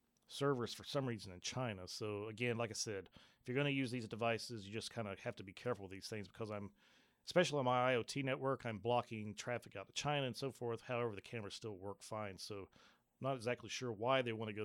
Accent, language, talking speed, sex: American, English, 250 wpm, male